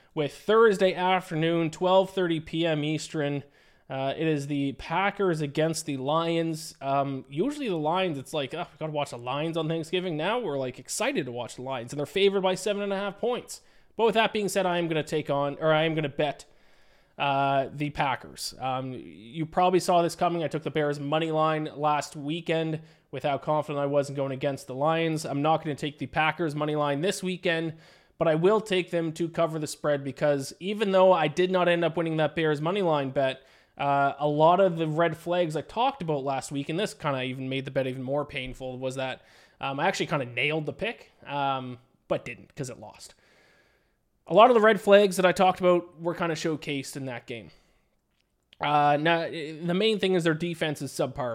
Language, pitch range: English, 140-175 Hz